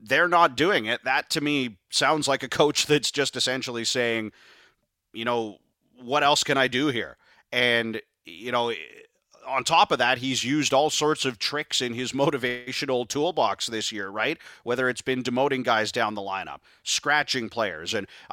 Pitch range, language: 115-140 Hz, English